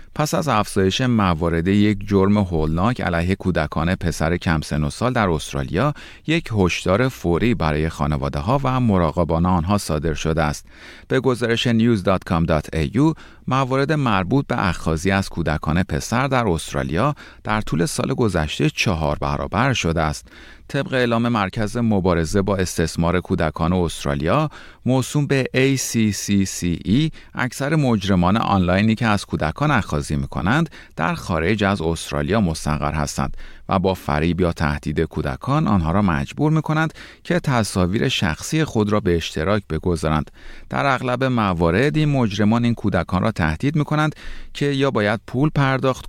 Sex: male